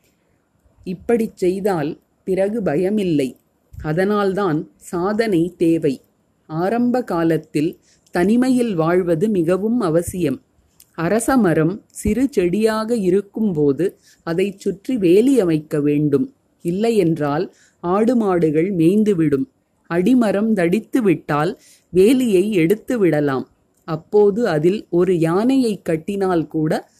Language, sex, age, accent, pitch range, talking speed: Tamil, female, 30-49, native, 160-210 Hz, 80 wpm